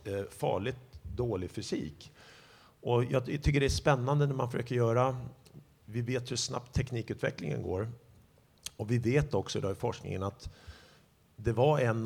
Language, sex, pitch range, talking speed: Swedish, male, 105-125 Hz, 150 wpm